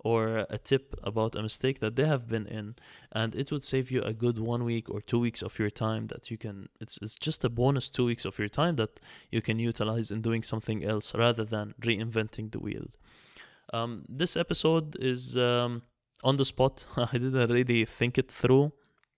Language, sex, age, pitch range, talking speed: English, male, 20-39, 110-125 Hz, 205 wpm